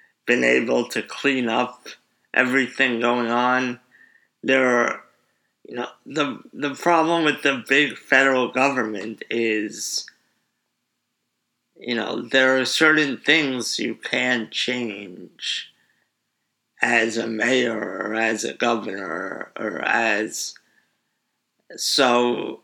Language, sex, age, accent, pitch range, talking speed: English, male, 50-69, American, 115-135 Hz, 105 wpm